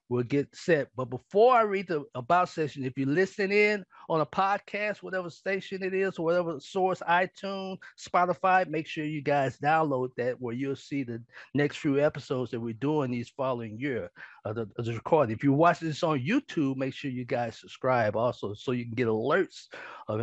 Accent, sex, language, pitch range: American, male, English, 125-180 Hz